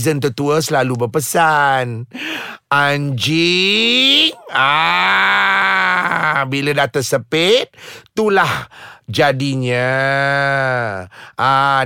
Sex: male